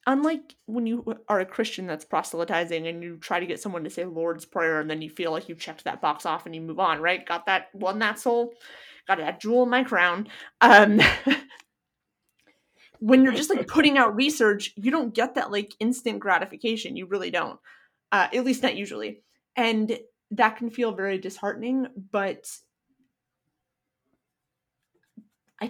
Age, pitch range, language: 20-39, 180-240 Hz, English